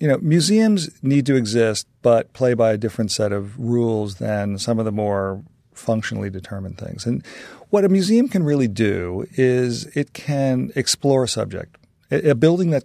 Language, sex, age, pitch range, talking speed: English, male, 40-59, 110-135 Hz, 175 wpm